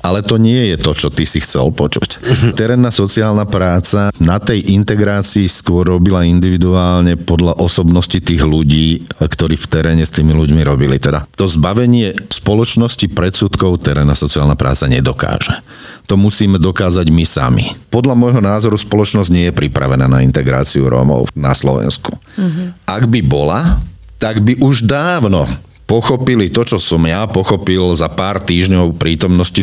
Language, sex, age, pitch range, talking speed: Slovak, male, 50-69, 80-105 Hz, 150 wpm